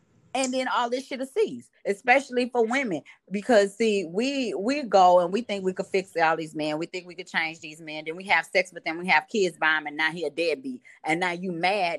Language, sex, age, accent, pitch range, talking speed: English, female, 30-49, American, 165-220 Hz, 255 wpm